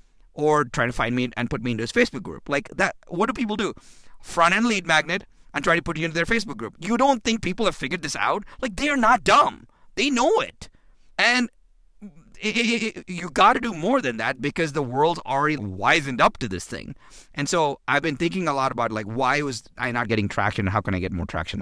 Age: 40-59